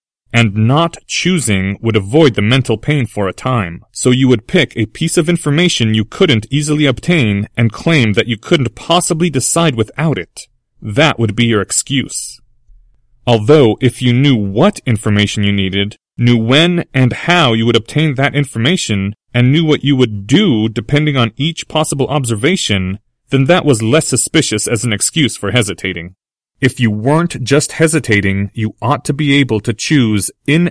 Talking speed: 170 wpm